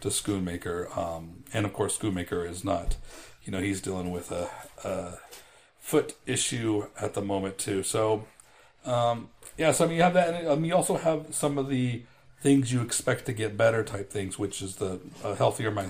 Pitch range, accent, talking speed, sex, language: 105-135 Hz, American, 200 wpm, male, English